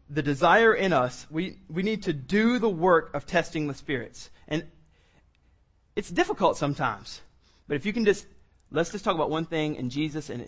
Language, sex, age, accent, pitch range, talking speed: English, male, 30-49, American, 140-185 Hz, 190 wpm